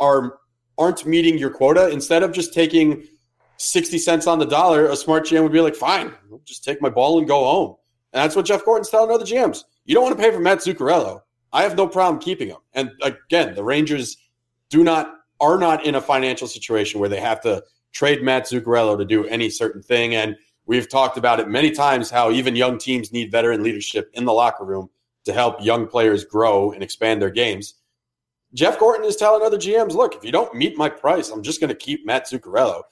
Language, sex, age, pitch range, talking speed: English, male, 30-49, 120-165 Hz, 220 wpm